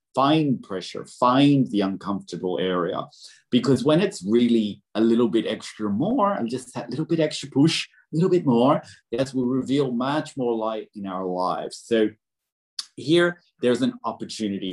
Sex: male